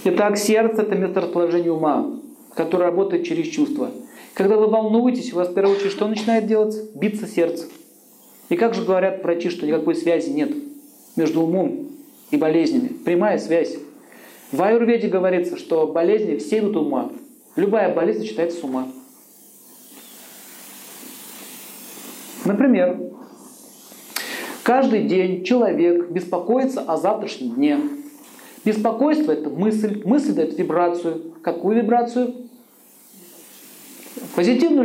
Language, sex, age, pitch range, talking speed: Russian, male, 40-59, 175-260 Hz, 120 wpm